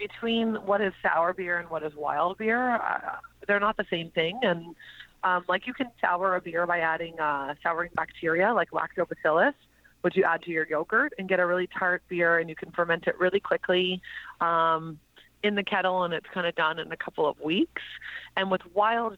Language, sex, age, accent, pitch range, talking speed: English, female, 30-49, American, 170-210 Hz, 210 wpm